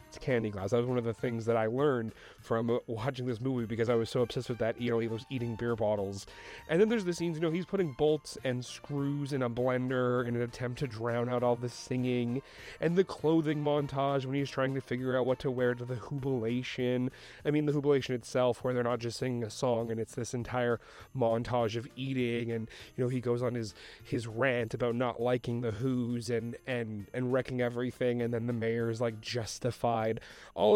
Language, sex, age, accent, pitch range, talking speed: English, male, 30-49, American, 120-135 Hz, 220 wpm